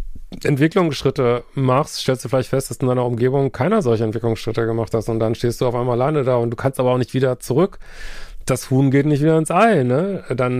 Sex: male